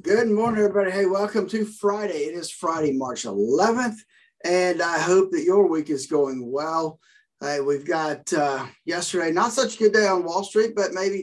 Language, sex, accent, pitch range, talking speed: English, male, American, 145-215 Hz, 185 wpm